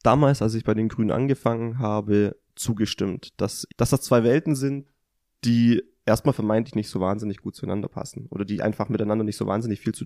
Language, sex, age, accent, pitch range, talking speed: German, male, 20-39, German, 105-125 Hz, 195 wpm